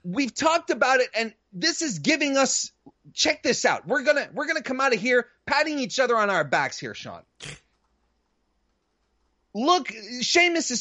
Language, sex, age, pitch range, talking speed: English, male, 30-49, 195-280 Hz, 170 wpm